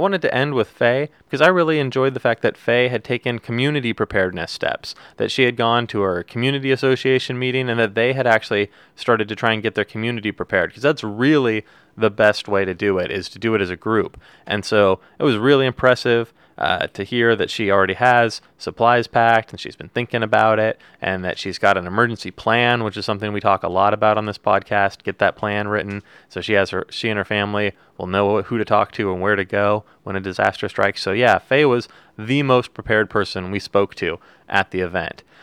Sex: male